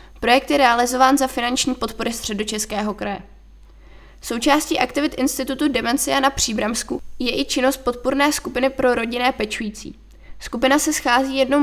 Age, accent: 20-39, native